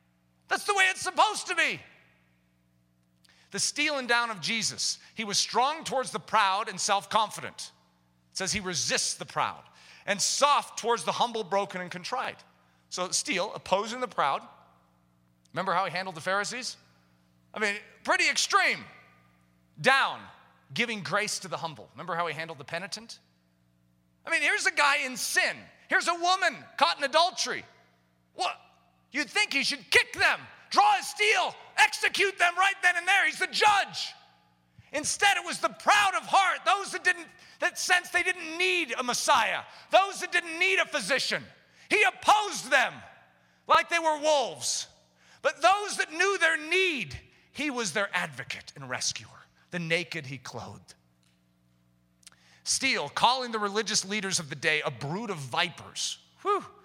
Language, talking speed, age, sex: English, 160 wpm, 40-59, male